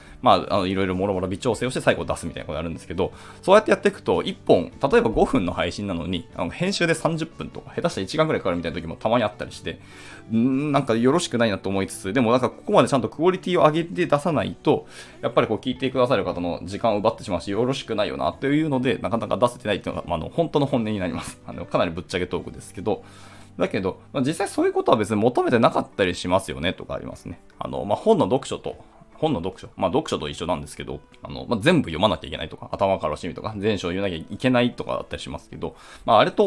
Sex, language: male, Japanese